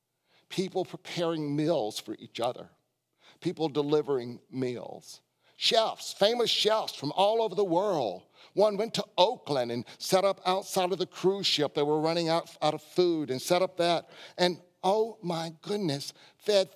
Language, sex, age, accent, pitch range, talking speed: English, male, 60-79, American, 130-180 Hz, 160 wpm